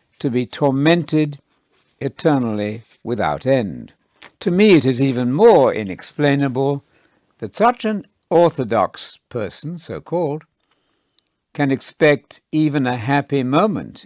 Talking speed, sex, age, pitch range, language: 105 wpm, male, 60-79, 120-160 Hz, English